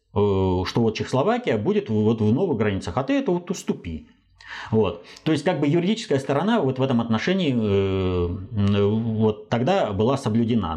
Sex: male